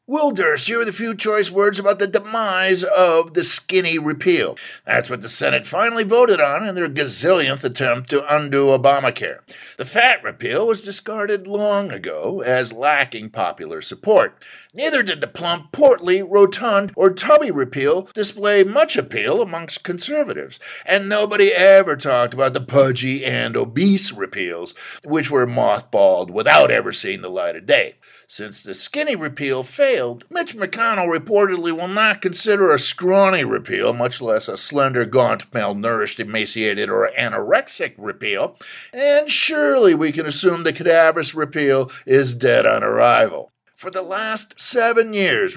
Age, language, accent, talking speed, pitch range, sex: 50-69, English, American, 150 wpm, 160-225 Hz, male